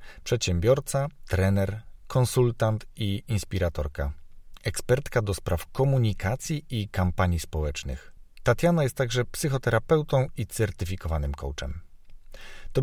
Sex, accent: male, native